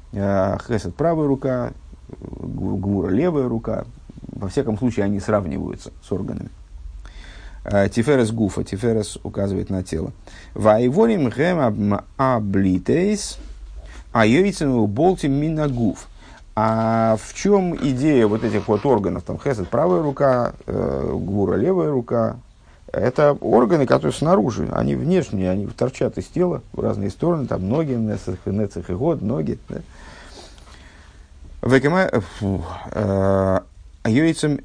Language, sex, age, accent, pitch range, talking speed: Russian, male, 50-69, native, 90-130 Hz, 100 wpm